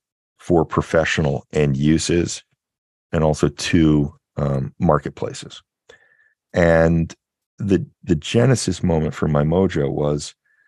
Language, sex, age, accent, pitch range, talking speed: English, male, 40-59, American, 75-90 Hz, 100 wpm